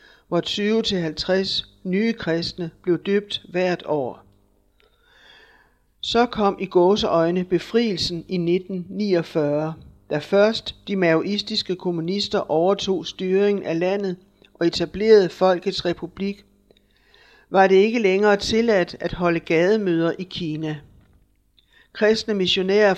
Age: 60-79